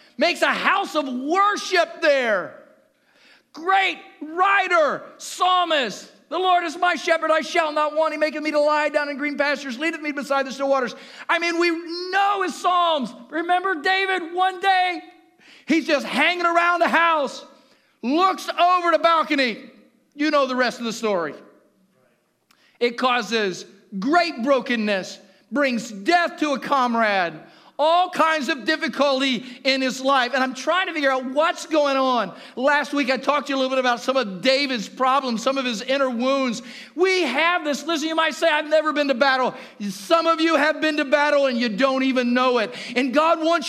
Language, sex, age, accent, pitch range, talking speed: English, male, 50-69, American, 260-330 Hz, 180 wpm